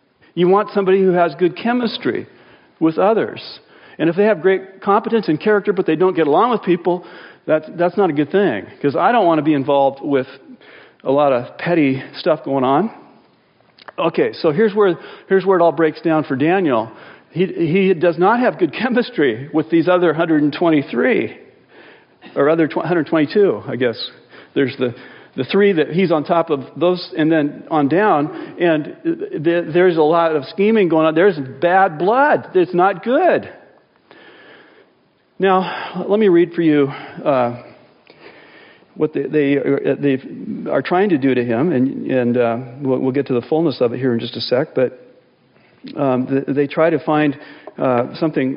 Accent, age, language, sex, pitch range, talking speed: American, 50-69, English, male, 145-190 Hz, 175 wpm